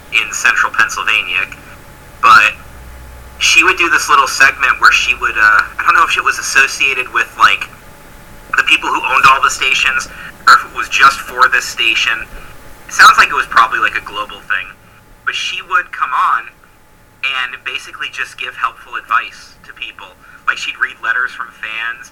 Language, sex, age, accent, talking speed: English, male, 30-49, American, 180 wpm